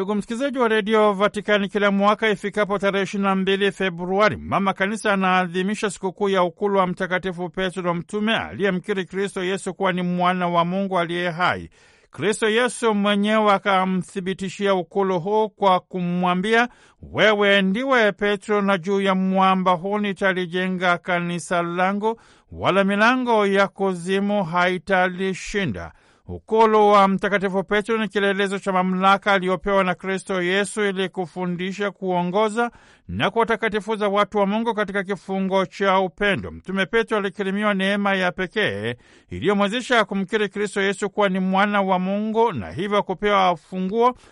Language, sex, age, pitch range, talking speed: Swahili, male, 60-79, 185-210 Hz, 135 wpm